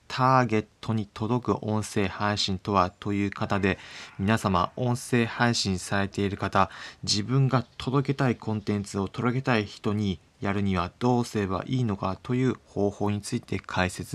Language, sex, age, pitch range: Japanese, male, 20-39, 95-115 Hz